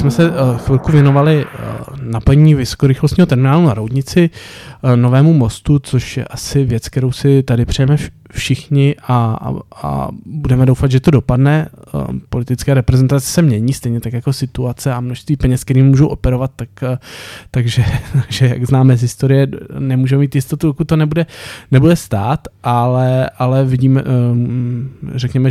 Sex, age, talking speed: male, 20-39, 145 wpm